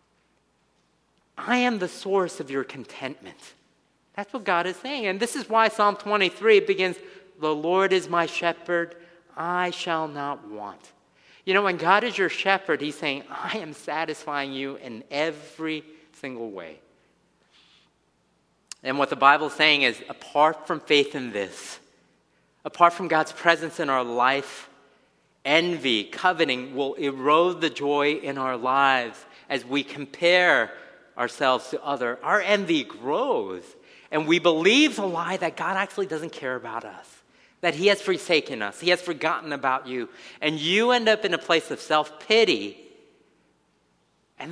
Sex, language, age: male, English, 50-69